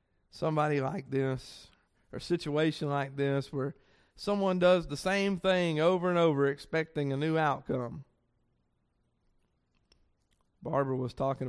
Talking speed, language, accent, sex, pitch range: 125 wpm, English, American, male, 140-215 Hz